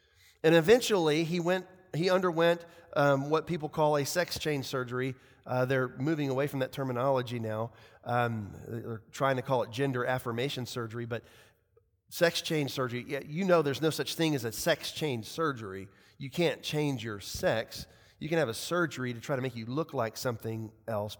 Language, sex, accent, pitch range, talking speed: English, male, American, 120-160 Hz, 185 wpm